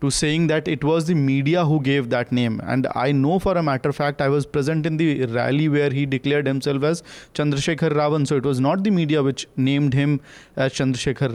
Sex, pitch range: male, 125-145 Hz